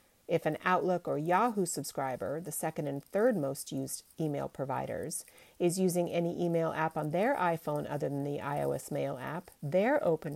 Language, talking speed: English, 175 wpm